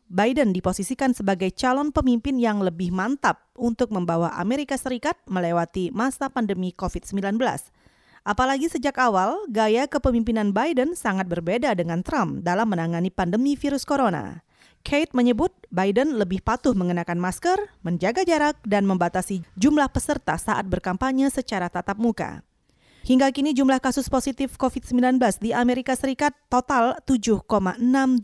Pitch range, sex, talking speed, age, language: 195-265 Hz, female, 125 wpm, 30-49, Indonesian